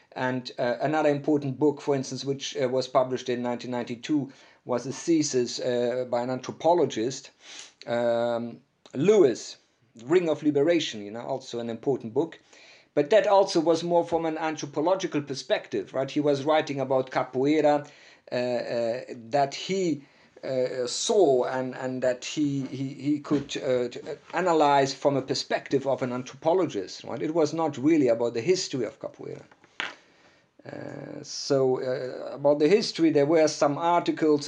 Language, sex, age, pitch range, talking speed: English, male, 50-69, 120-150 Hz, 150 wpm